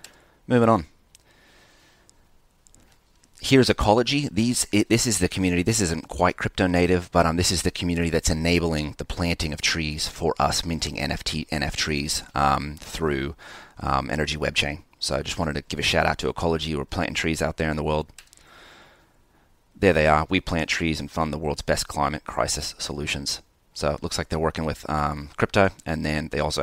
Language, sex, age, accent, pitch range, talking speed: English, male, 30-49, American, 80-100 Hz, 190 wpm